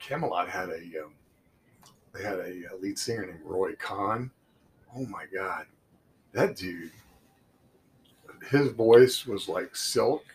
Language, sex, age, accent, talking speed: English, male, 40-59, American, 130 wpm